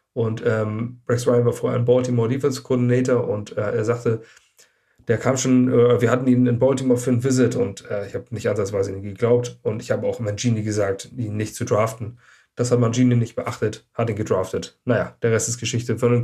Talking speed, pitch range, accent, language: 210 wpm, 115-130 Hz, German, German